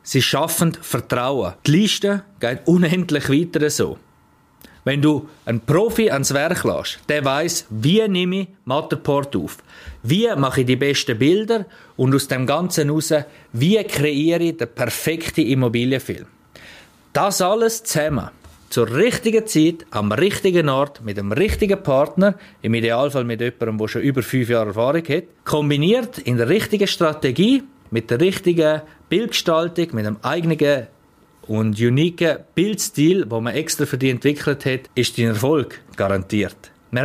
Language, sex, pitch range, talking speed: German, male, 120-160 Hz, 150 wpm